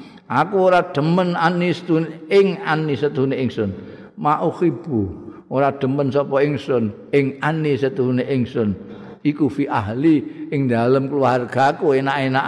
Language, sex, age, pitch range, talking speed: Indonesian, male, 50-69, 120-155 Hz, 115 wpm